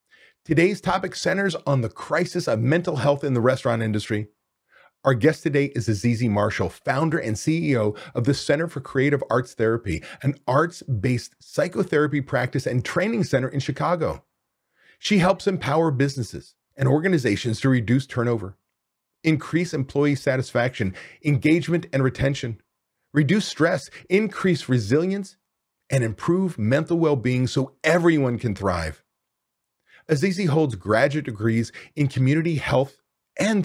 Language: English